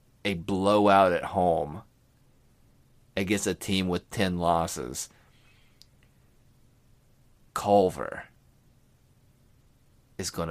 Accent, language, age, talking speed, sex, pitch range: American, English, 30-49, 75 wpm, male, 120-145 Hz